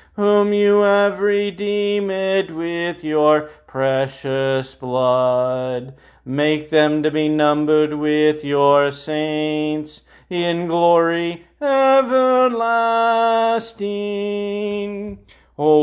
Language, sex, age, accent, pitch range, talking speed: English, male, 40-59, American, 150-205 Hz, 75 wpm